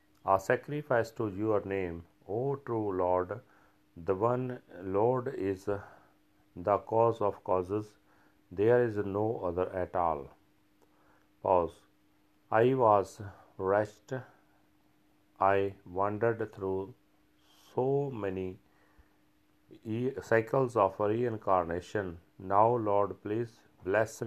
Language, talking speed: Punjabi, 100 wpm